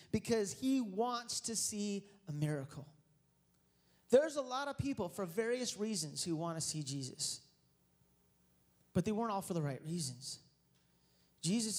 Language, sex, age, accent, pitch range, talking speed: English, male, 30-49, American, 155-220 Hz, 150 wpm